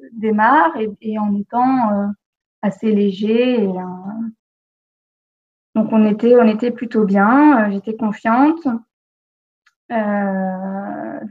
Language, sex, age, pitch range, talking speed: French, female, 20-39, 205-240 Hz, 110 wpm